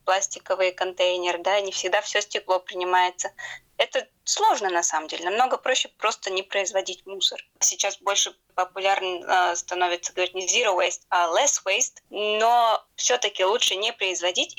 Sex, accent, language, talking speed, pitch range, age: female, native, Russian, 150 wpm, 185-230 Hz, 20-39